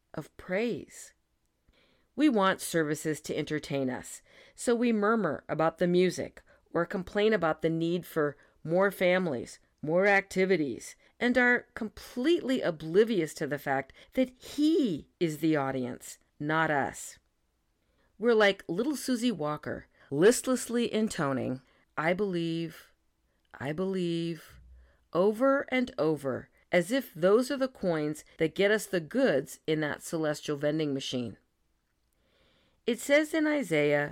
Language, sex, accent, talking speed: English, female, American, 125 wpm